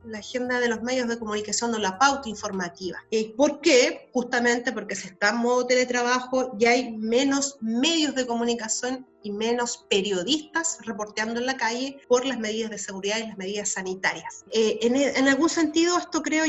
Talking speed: 170 wpm